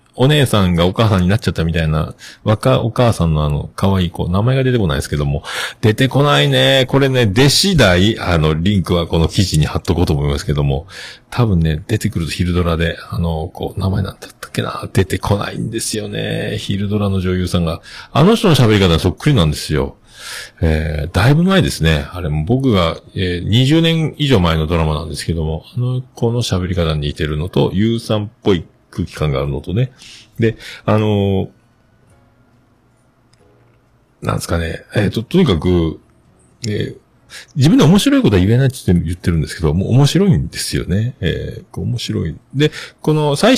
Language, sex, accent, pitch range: Japanese, male, native, 85-130 Hz